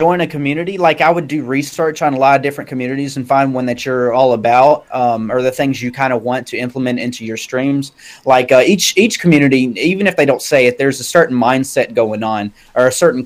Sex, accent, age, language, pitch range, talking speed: male, American, 30-49, English, 125-165 Hz, 245 wpm